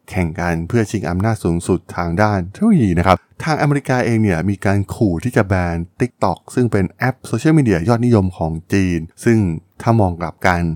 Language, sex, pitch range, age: Thai, male, 85-115 Hz, 20-39